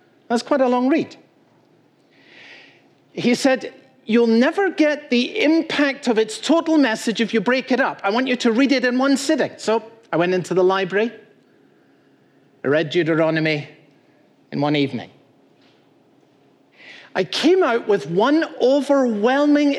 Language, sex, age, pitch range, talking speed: English, male, 50-69, 175-260 Hz, 145 wpm